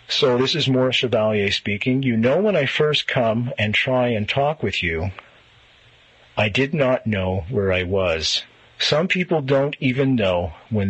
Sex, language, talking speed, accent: male, English, 170 wpm, American